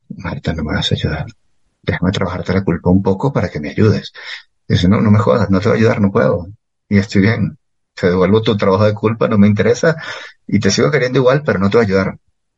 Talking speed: 250 wpm